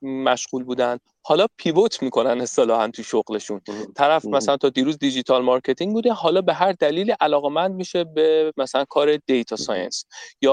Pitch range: 140-185 Hz